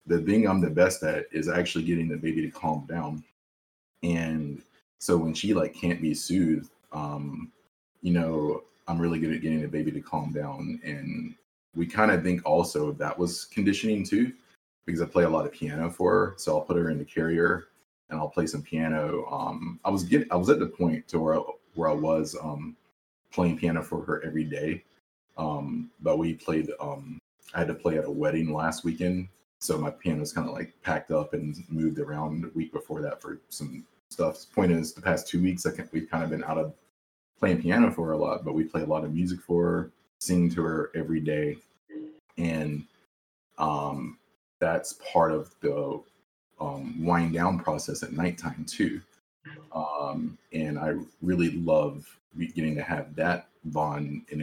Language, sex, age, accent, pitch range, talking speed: English, male, 20-39, American, 75-85 Hz, 195 wpm